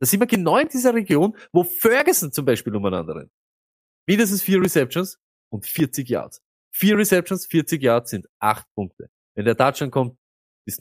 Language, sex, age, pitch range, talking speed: German, male, 20-39, 100-155 Hz, 170 wpm